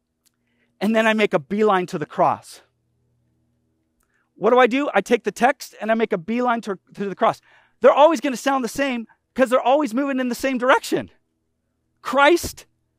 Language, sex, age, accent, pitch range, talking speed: English, male, 30-49, American, 180-270 Hz, 190 wpm